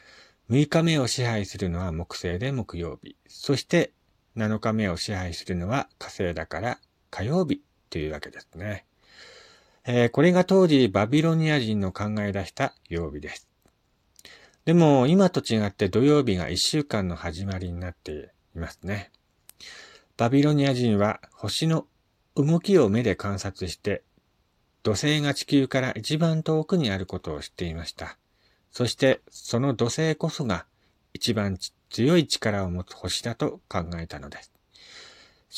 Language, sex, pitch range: Japanese, male, 95-140 Hz